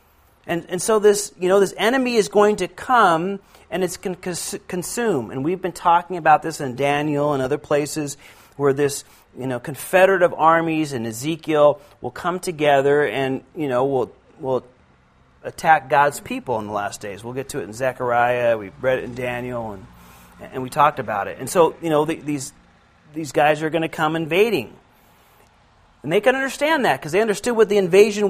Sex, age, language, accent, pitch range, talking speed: male, 40-59, Finnish, American, 140-205 Hz, 195 wpm